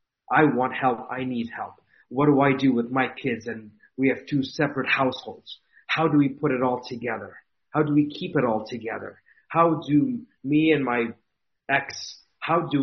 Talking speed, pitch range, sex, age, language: 190 wpm, 130-165 Hz, male, 40-59, English